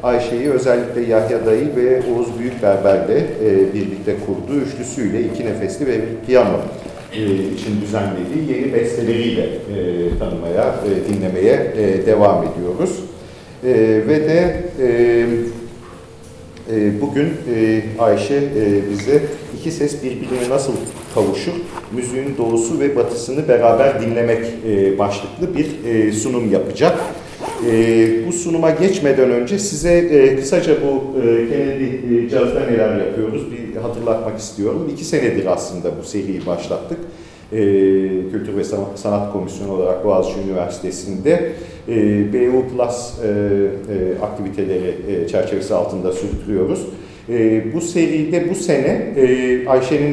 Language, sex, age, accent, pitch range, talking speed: Turkish, male, 50-69, native, 100-135 Hz, 110 wpm